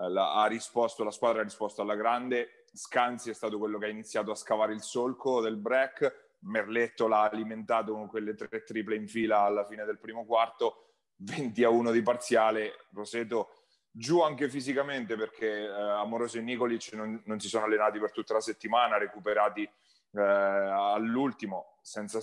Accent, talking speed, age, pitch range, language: native, 175 wpm, 30-49, 105-125 Hz, Italian